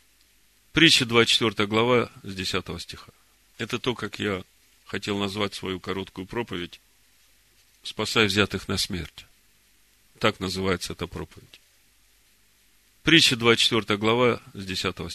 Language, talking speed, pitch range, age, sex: Russian, 110 wpm, 100-135 Hz, 40-59, male